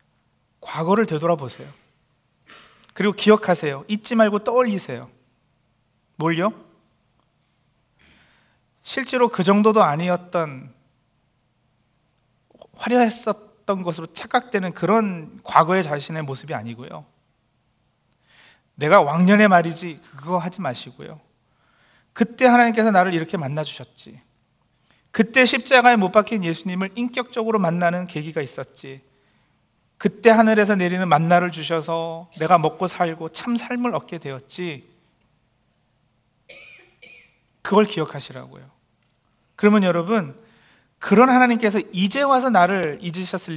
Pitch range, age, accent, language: 150-215 Hz, 40-59, native, Korean